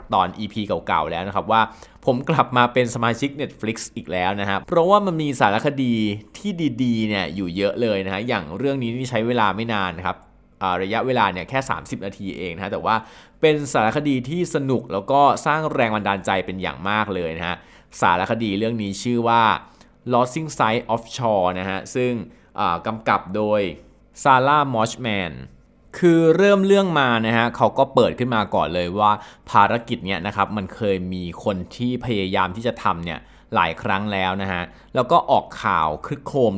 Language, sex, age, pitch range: Thai, male, 20-39, 95-125 Hz